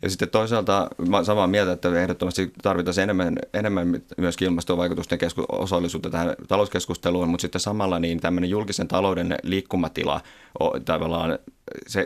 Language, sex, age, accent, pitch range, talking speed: Finnish, male, 30-49, native, 85-95 Hz, 125 wpm